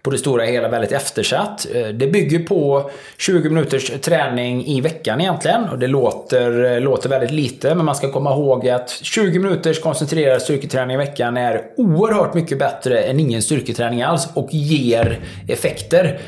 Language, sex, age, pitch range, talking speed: English, male, 20-39, 130-175 Hz, 160 wpm